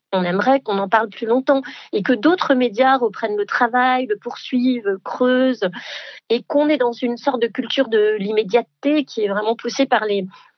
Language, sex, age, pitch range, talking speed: French, female, 40-59, 215-270 Hz, 185 wpm